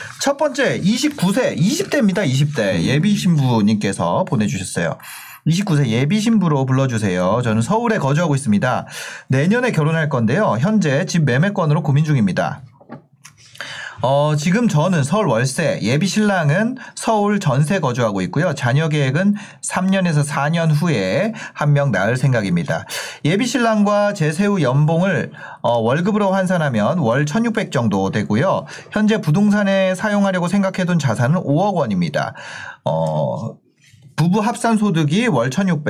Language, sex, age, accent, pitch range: Korean, male, 40-59, native, 140-205 Hz